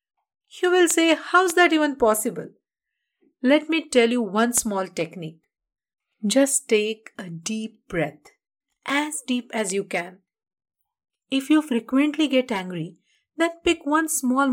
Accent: Indian